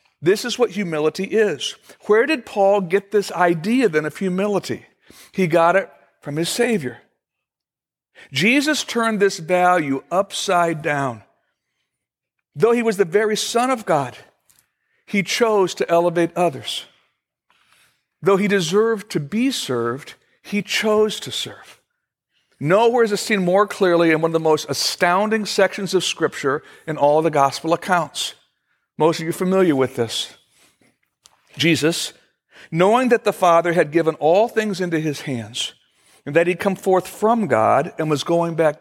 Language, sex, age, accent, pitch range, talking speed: English, male, 60-79, American, 150-205 Hz, 155 wpm